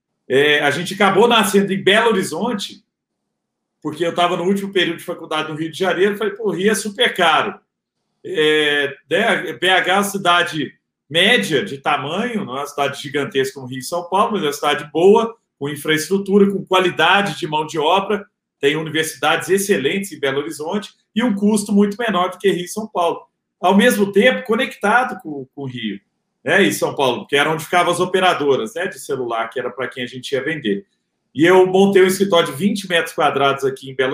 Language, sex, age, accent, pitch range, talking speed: Portuguese, male, 40-59, Brazilian, 155-205 Hz, 205 wpm